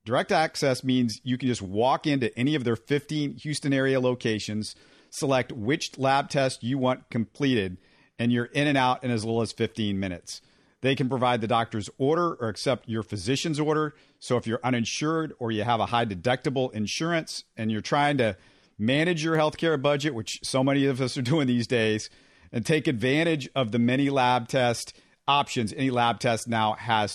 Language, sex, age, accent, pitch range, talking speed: English, male, 50-69, American, 110-135 Hz, 190 wpm